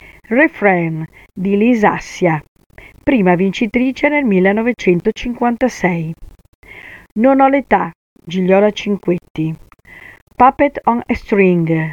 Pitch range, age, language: 170-235 Hz, 50-69, Italian